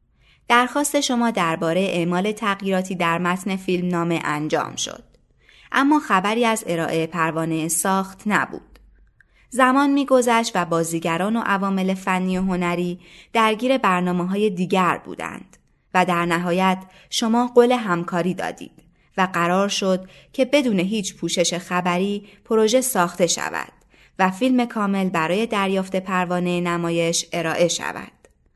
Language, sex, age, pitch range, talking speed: Persian, female, 20-39, 175-230 Hz, 120 wpm